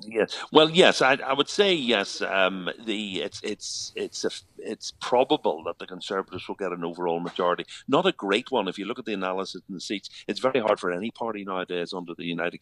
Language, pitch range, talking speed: English, 95-145 Hz, 225 wpm